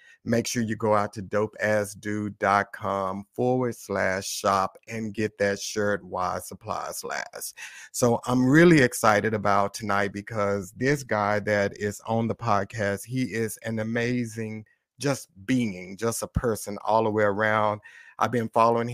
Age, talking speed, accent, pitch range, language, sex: 50-69, 150 wpm, American, 105-120 Hz, English, male